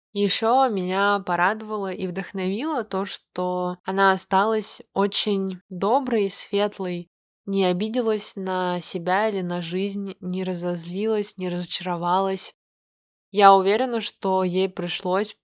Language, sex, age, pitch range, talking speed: Russian, female, 20-39, 180-200 Hz, 115 wpm